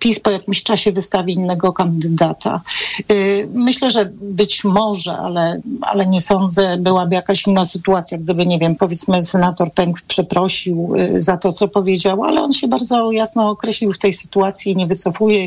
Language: Polish